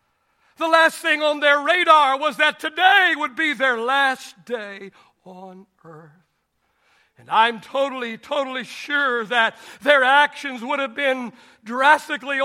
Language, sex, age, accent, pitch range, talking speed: English, male, 60-79, American, 245-300 Hz, 135 wpm